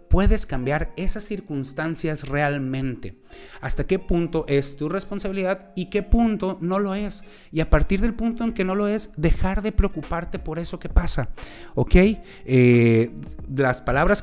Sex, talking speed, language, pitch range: male, 155 wpm, Spanish, 130-185 Hz